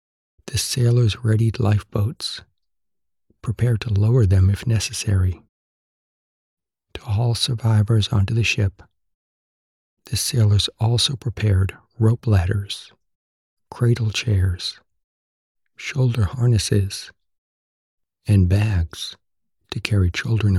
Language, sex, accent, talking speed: English, male, American, 90 wpm